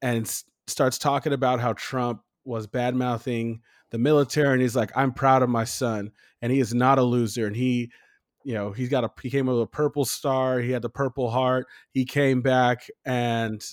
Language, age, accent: English, 20-39, American